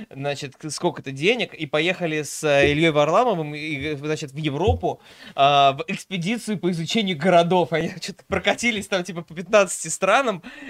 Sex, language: male, Russian